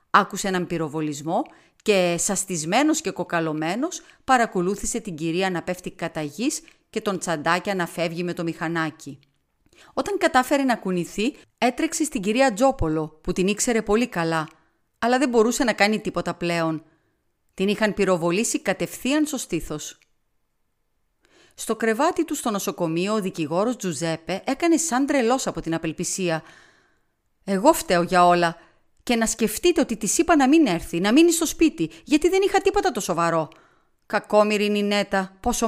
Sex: female